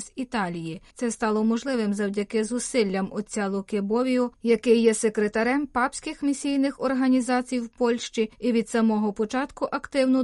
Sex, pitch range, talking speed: female, 210-265 Hz, 130 wpm